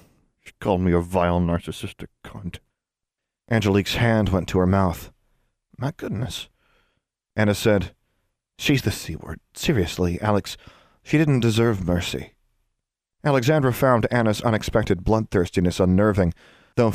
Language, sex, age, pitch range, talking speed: English, male, 40-59, 95-115 Hz, 115 wpm